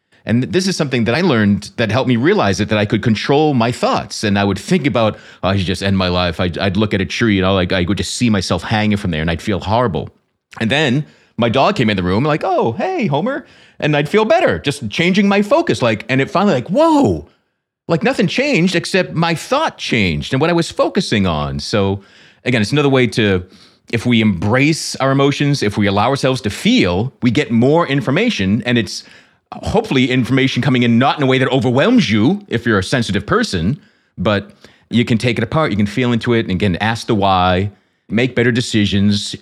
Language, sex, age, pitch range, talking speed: English, male, 30-49, 100-130 Hz, 220 wpm